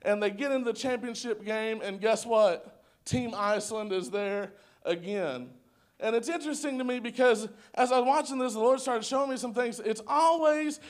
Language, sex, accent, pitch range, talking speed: English, male, American, 215-255 Hz, 195 wpm